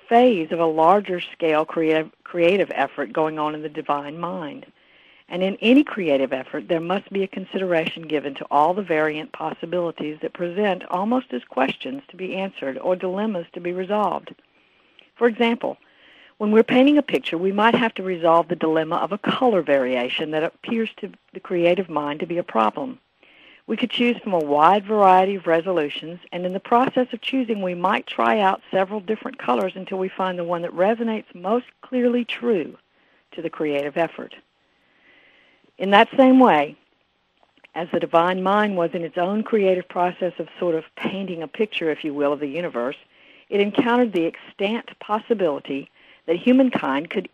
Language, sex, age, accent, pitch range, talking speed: English, female, 60-79, American, 165-225 Hz, 175 wpm